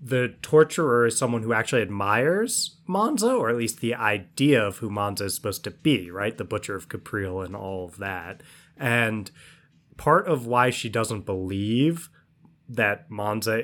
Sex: male